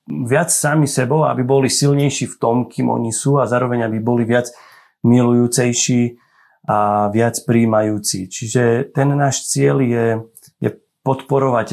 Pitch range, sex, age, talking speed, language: 105-130 Hz, male, 30-49, 140 wpm, Slovak